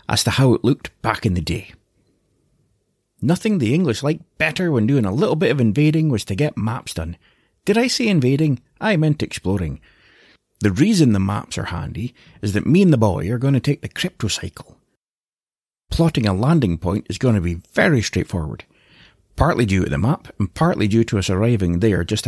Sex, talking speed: male, 200 wpm